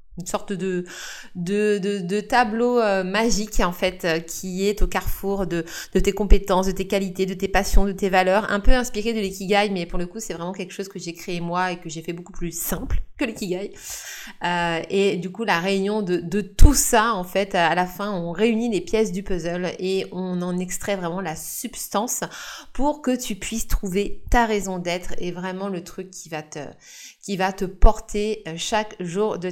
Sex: female